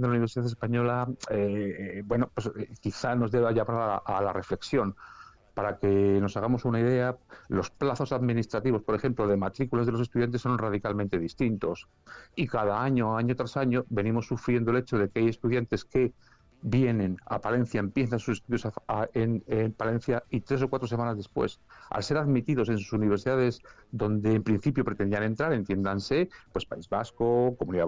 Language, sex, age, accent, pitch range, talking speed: Spanish, male, 50-69, Spanish, 105-130 Hz, 180 wpm